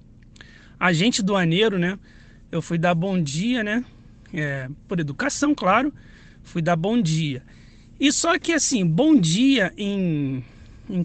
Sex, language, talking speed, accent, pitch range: male, Portuguese, 135 wpm, Brazilian, 155-220 Hz